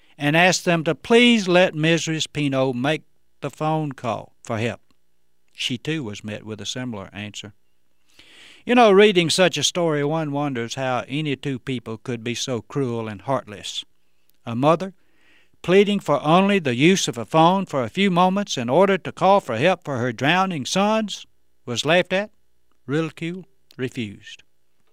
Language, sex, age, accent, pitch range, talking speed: English, male, 60-79, American, 120-175 Hz, 165 wpm